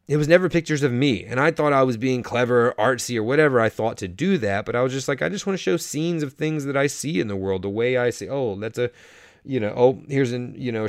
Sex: male